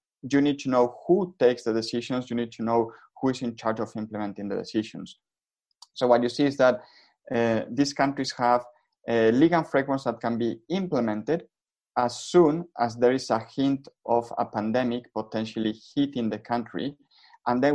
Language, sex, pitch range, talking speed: English, male, 110-130 Hz, 180 wpm